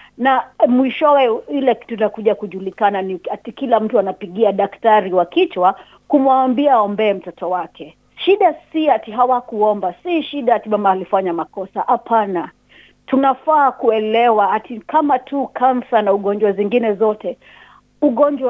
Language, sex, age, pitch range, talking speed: Swahili, female, 40-59, 195-240 Hz, 130 wpm